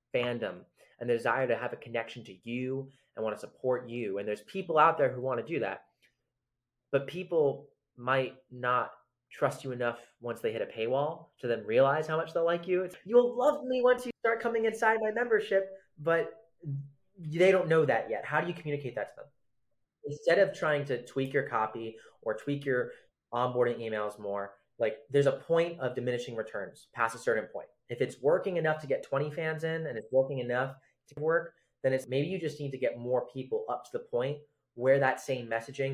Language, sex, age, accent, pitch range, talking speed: English, male, 20-39, American, 125-170 Hz, 210 wpm